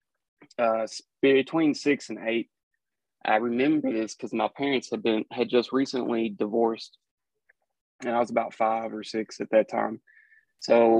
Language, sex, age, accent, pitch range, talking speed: English, male, 20-39, American, 105-115 Hz, 155 wpm